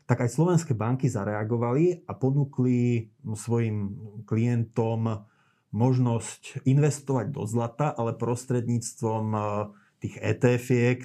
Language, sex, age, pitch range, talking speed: Slovak, male, 30-49, 110-130 Hz, 90 wpm